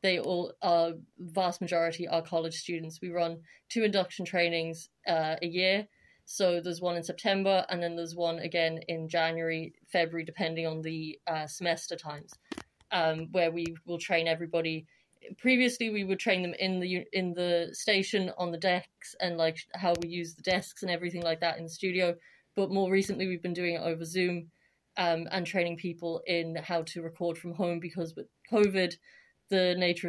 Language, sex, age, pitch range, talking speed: English, female, 30-49, 165-180 Hz, 185 wpm